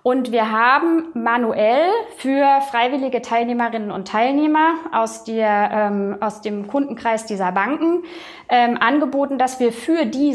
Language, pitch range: German, 210-280 Hz